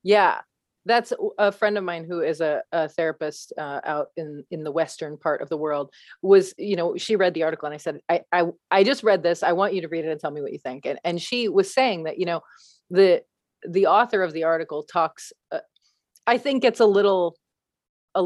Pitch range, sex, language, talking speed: 155-195 Hz, female, English, 235 wpm